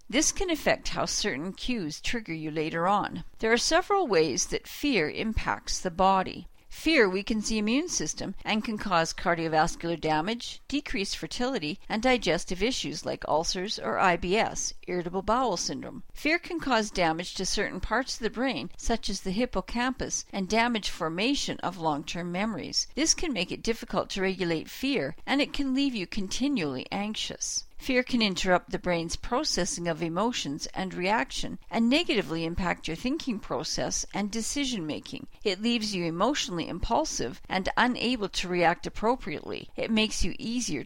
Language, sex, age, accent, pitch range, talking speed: English, female, 50-69, American, 180-250 Hz, 160 wpm